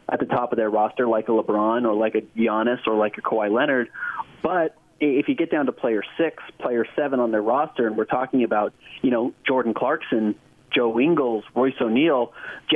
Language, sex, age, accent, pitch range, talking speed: English, male, 30-49, American, 115-150 Hz, 205 wpm